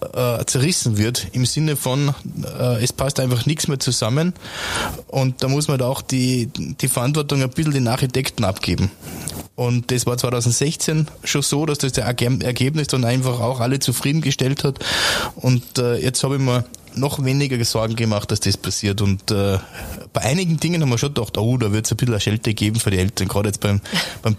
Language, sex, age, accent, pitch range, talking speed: German, male, 20-39, German, 115-150 Hz, 195 wpm